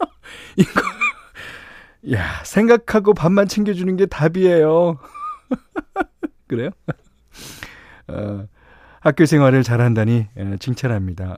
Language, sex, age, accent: Korean, male, 40-59, native